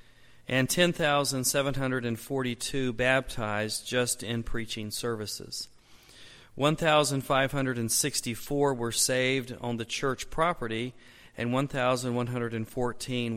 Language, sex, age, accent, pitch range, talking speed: English, male, 40-59, American, 120-145 Hz, 70 wpm